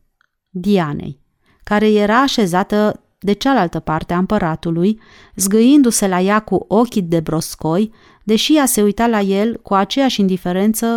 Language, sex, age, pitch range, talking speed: Romanian, female, 30-49, 175-220 Hz, 135 wpm